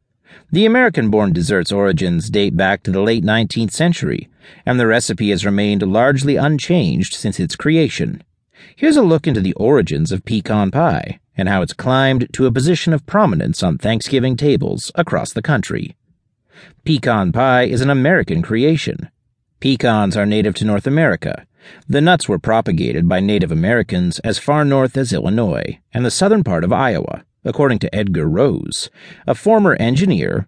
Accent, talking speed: American, 160 wpm